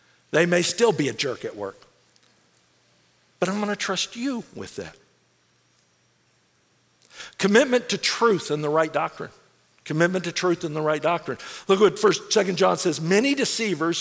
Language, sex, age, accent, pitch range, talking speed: English, male, 50-69, American, 170-235 Hz, 165 wpm